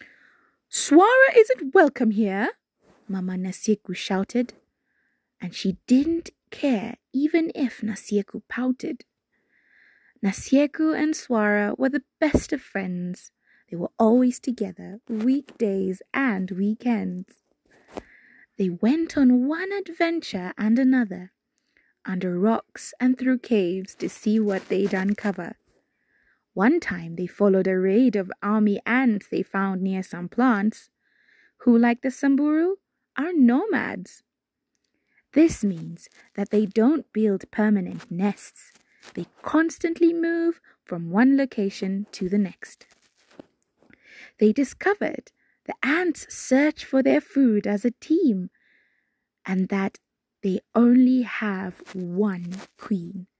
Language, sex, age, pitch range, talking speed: English, female, 20-39, 195-280 Hz, 115 wpm